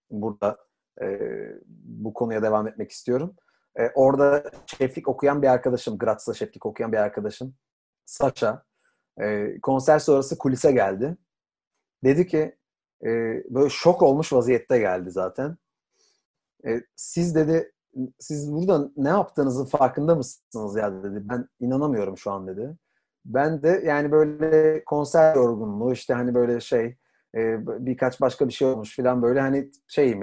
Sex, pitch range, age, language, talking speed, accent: male, 115-145 Hz, 40-59, Turkish, 135 wpm, native